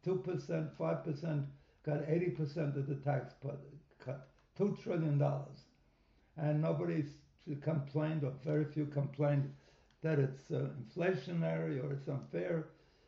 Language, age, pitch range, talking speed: English, 60-79, 140-160 Hz, 130 wpm